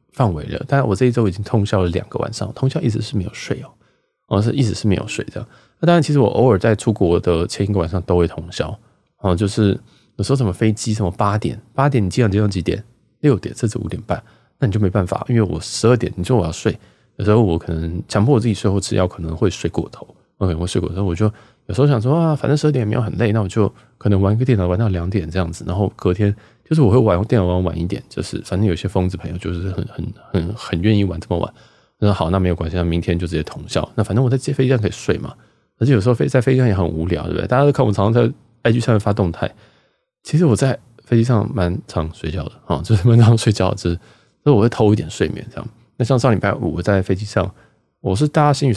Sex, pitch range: male, 95-120 Hz